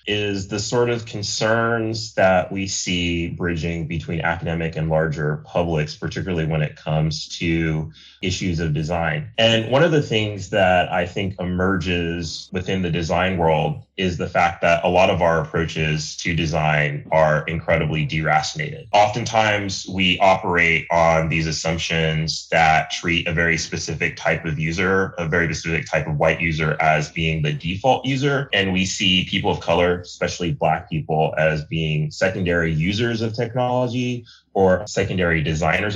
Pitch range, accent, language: 80-100 Hz, American, English